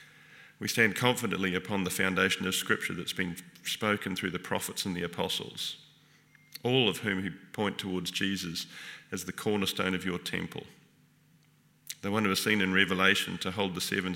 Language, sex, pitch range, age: English, male, 90-100 Hz, 40-59